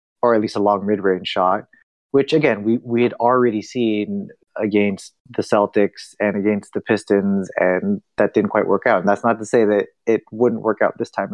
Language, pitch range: English, 100-120 Hz